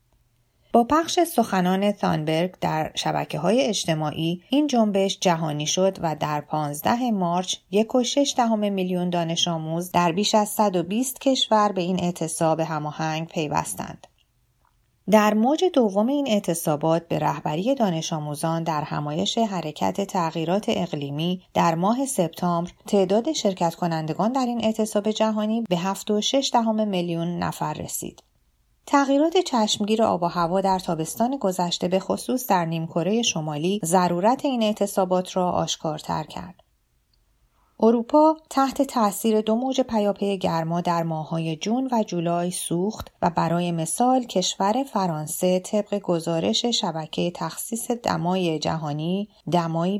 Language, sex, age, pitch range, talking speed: Persian, female, 30-49, 170-220 Hz, 130 wpm